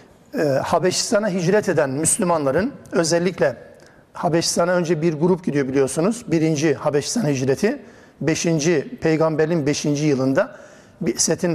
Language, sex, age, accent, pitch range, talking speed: Turkish, male, 60-79, native, 155-190 Hz, 105 wpm